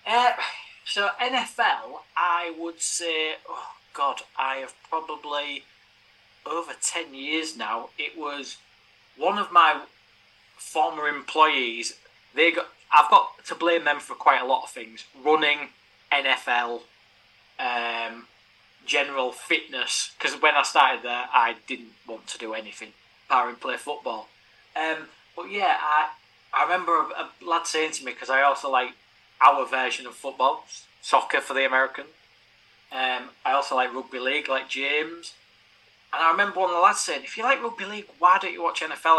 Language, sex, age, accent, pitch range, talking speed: English, male, 30-49, British, 120-170 Hz, 160 wpm